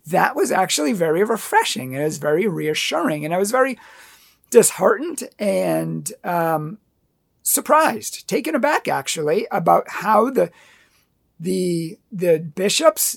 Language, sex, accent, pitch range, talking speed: English, male, American, 180-235 Hz, 120 wpm